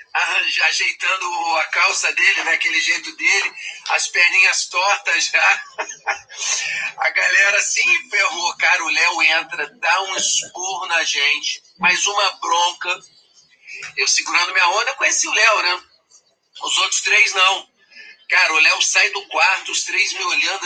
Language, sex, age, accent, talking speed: Portuguese, male, 40-59, Brazilian, 145 wpm